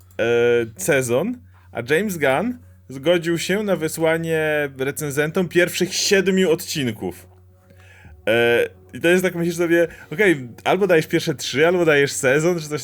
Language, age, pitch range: Polish, 20-39, 115-160 Hz